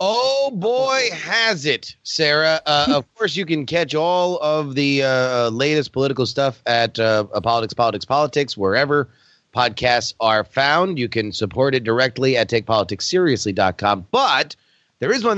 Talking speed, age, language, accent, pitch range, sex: 150 wpm, 30-49, English, American, 125-170 Hz, male